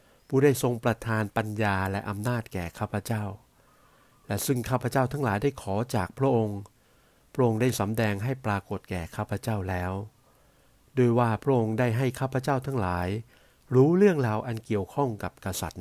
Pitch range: 100-125 Hz